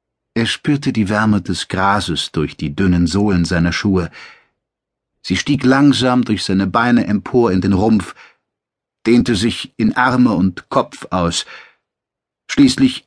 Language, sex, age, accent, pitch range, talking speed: German, male, 60-79, German, 95-125 Hz, 140 wpm